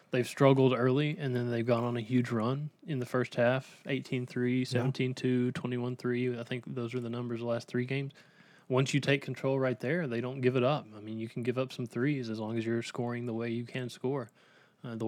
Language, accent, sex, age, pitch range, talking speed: English, American, male, 20-39, 115-135 Hz, 235 wpm